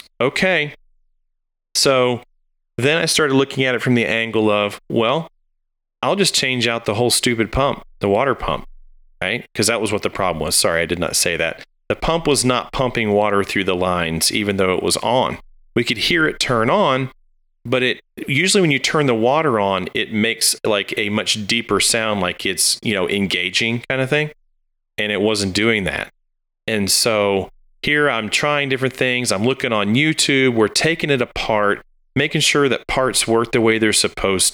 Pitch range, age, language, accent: 105-140 Hz, 30-49, English, American